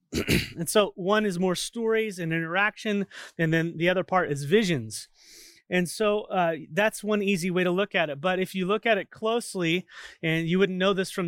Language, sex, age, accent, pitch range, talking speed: English, male, 30-49, American, 170-220 Hz, 205 wpm